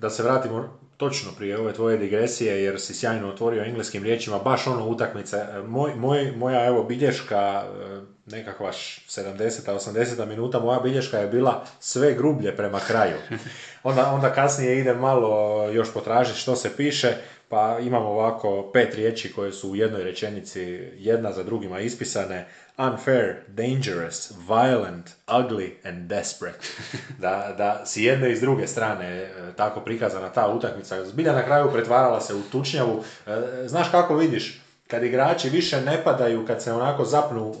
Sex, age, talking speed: male, 30-49, 150 wpm